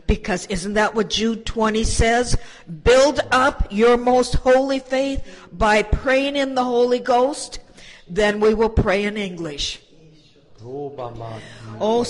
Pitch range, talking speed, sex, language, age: 215-255 Hz, 130 wpm, female, English, 50-69